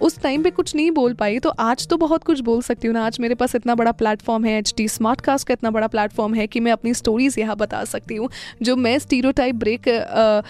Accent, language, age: native, Hindi, 10-29